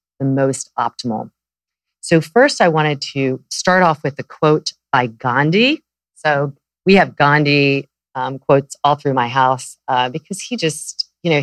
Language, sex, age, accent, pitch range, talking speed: English, female, 40-59, American, 130-165 Hz, 165 wpm